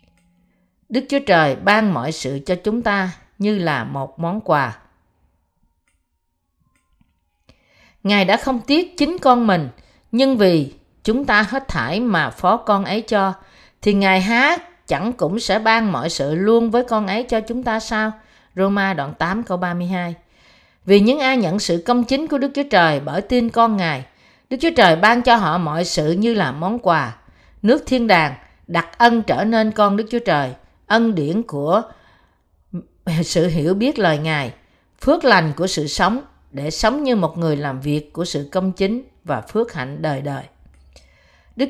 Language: Vietnamese